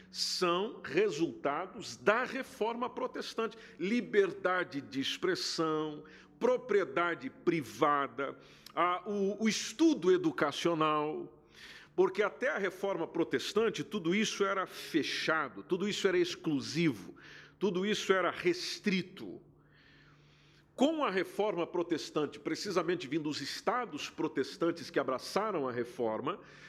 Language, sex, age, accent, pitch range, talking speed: Portuguese, male, 50-69, Brazilian, 170-270 Hz, 100 wpm